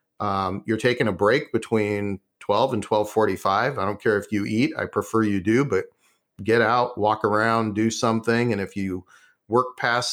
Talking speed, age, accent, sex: 190 wpm, 40-59, American, male